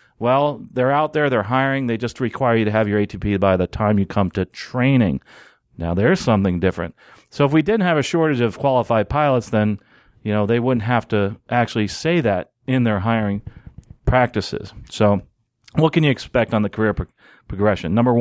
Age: 40-59